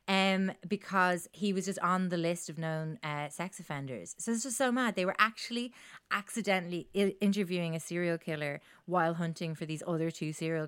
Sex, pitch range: female, 155-195 Hz